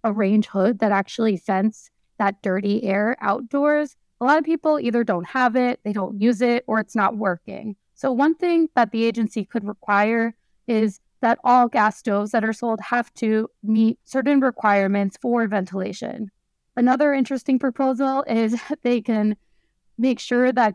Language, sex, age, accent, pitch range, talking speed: English, female, 20-39, American, 200-240 Hz, 170 wpm